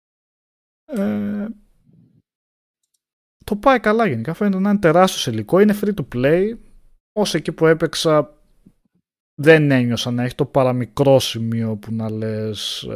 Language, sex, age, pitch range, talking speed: Greek, male, 20-39, 110-140 Hz, 135 wpm